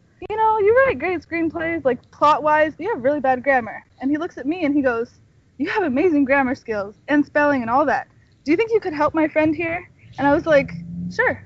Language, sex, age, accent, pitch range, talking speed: English, female, 20-39, American, 260-325 Hz, 240 wpm